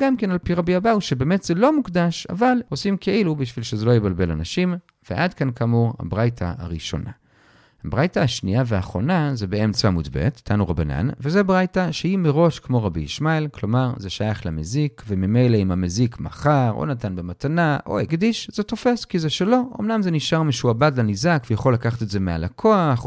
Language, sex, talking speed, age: Hebrew, male, 175 wpm, 40-59